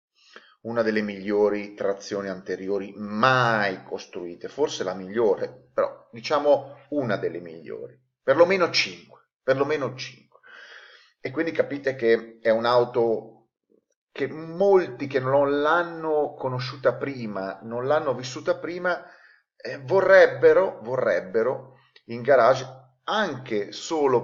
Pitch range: 110-175 Hz